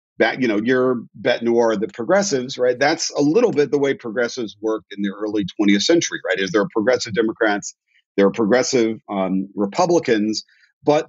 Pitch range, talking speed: 105-145 Hz, 180 wpm